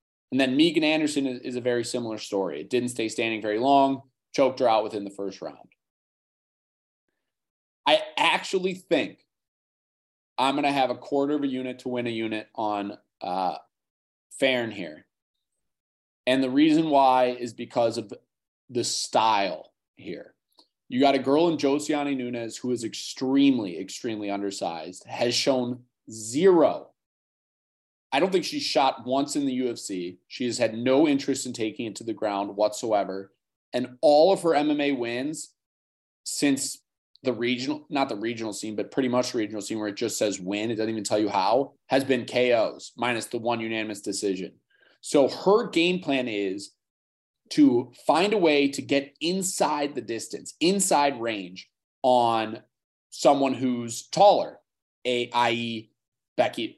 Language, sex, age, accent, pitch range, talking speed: English, male, 30-49, American, 110-140 Hz, 155 wpm